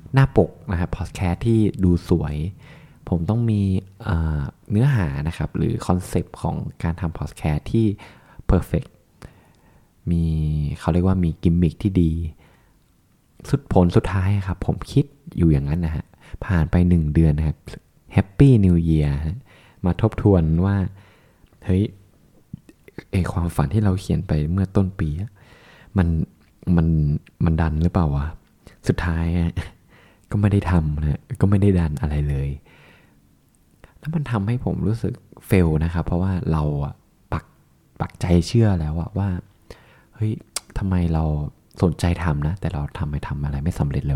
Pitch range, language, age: 80-100 Hz, Thai, 20-39